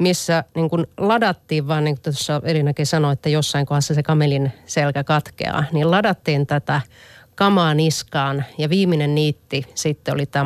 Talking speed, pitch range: 160 wpm, 140-160 Hz